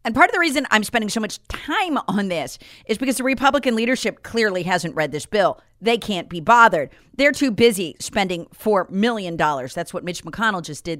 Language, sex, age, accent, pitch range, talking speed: English, female, 40-59, American, 180-255 Hz, 215 wpm